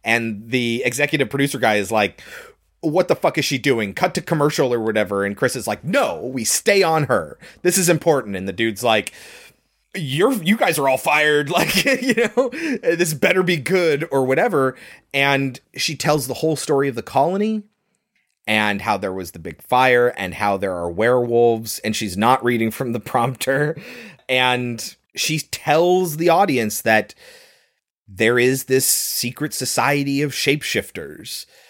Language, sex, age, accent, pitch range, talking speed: English, male, 30-49, American, 105-145 Hz, 170 wpm